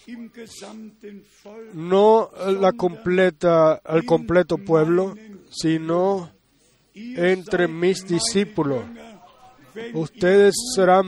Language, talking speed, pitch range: Spanish, 65 wpm, 170-205 Hz